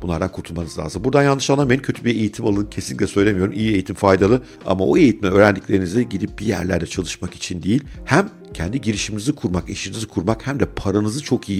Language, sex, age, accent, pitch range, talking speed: Turkish, male, 50-69, native, 90-120 Hz, 185 wpm